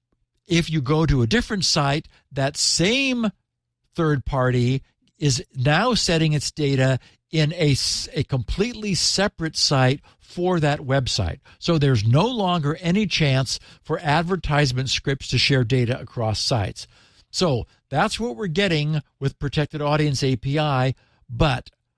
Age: 60-79